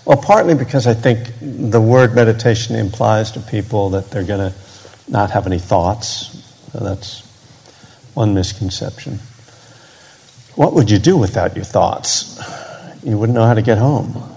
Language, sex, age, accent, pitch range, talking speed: English, male, 70-89, American, 115-130 Hz, 150 wpm